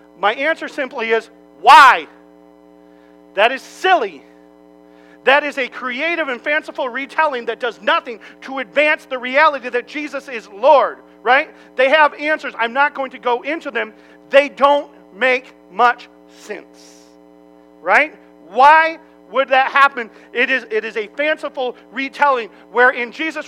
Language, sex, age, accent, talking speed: English, male, 40-59, American, 145 wpm